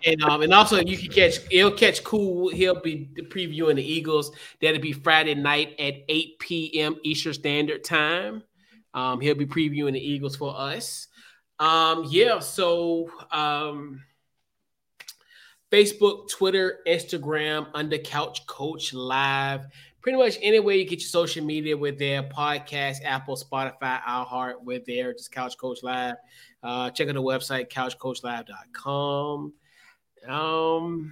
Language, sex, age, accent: English, male, 20-39, American